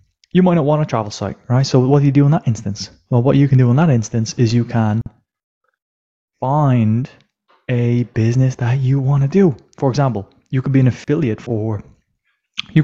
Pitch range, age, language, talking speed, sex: 115-140 Hz, 20-39, English, 205 wpm, male